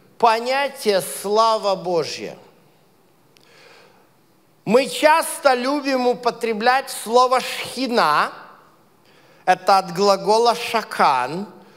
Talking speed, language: 65 wpm, Russian